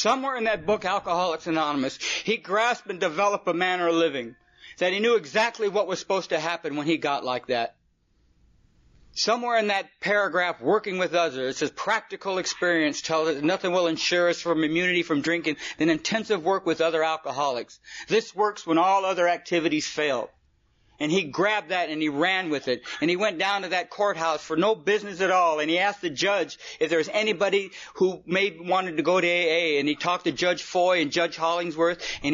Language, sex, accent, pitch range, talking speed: English, male, American, 160-200 Hz, 200 wpm